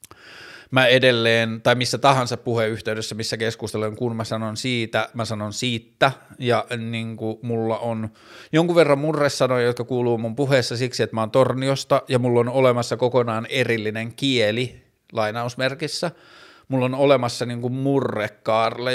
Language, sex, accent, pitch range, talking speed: Finnish, male, native, 115-135 Hz, 150 wpm